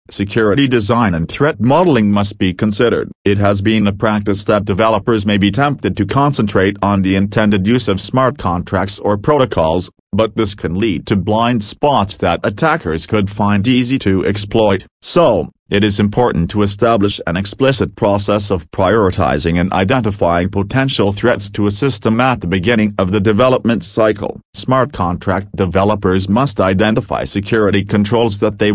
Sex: male